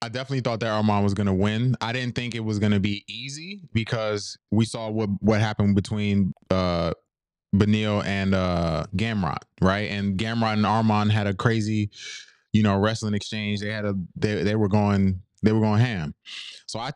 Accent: American